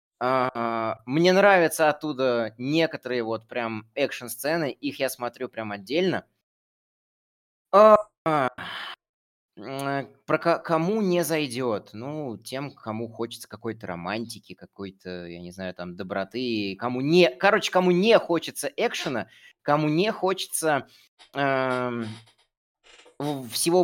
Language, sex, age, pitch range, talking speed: Russian, male, 20-39, 125-180 Hz, 95 wpm